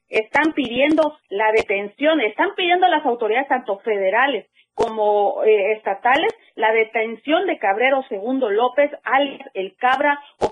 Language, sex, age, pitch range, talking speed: Spanish, female, 40-59, 220-290 Hz, 130 wpm